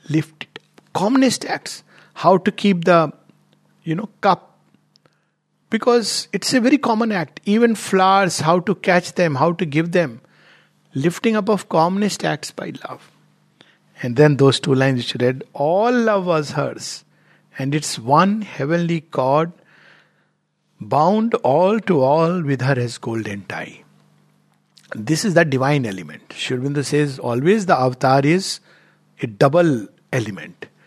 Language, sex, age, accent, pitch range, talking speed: English, male, 60-79, Indian, 140-185 Hz, 145 wpm